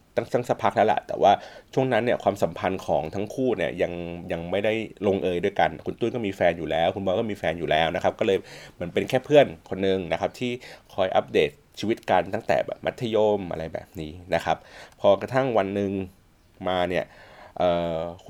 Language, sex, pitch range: Thai, male, 85-110 Hz